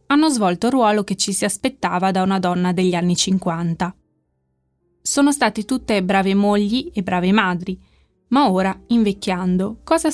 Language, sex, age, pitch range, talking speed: Italian, female, 20-39, 180-215 Hz, 155 wpm